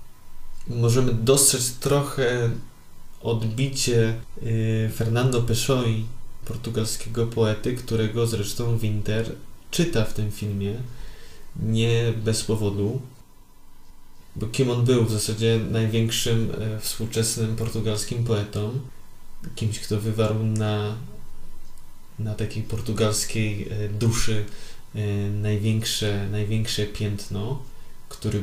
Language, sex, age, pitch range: Polish, male, 20-39, 105-115 Hz